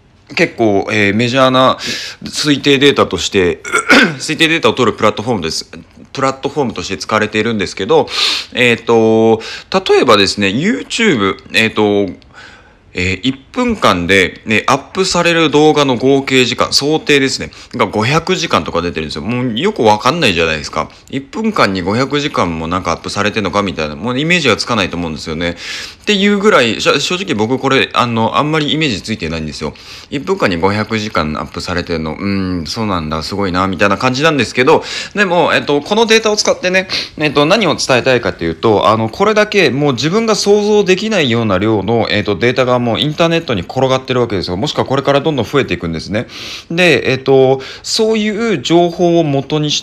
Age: 20-39